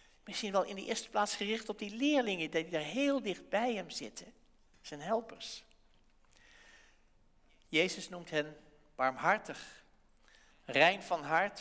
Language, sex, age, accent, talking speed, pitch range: English, male, 60-79, Dutch, 135 wpm, 170-230 Hz